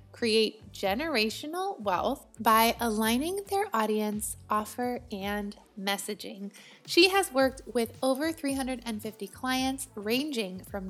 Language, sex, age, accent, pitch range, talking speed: English, female, 20-39, American, 210-265 Hz, 105 wpm